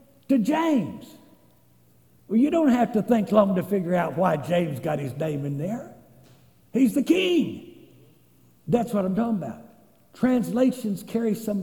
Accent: American